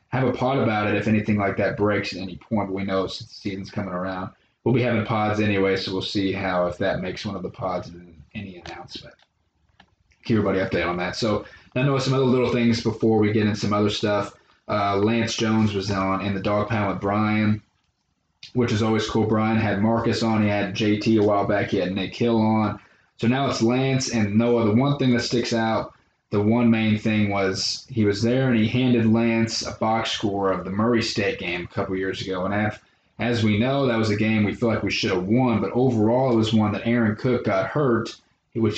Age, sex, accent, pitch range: 20-39, male, American, 100-115 Hz